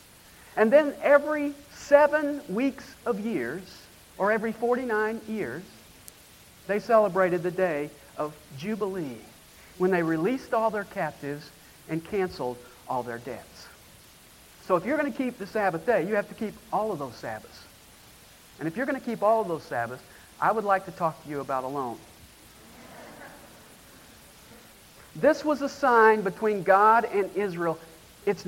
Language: English